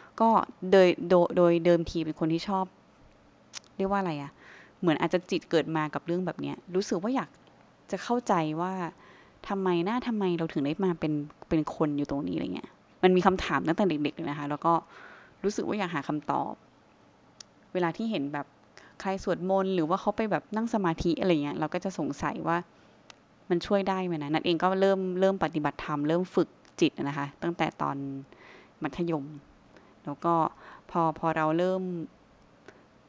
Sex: female